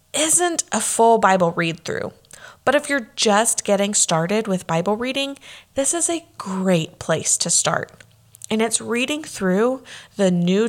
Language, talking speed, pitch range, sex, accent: English, 155 wpm, 180-260 Hz, female, American